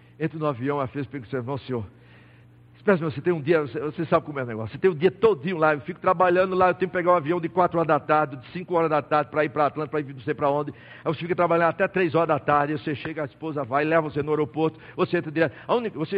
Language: Portuguese